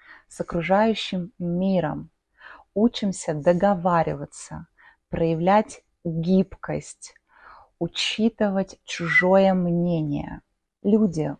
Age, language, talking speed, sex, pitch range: 20-39, Russian, 60 wpm, female, 160-195 Hz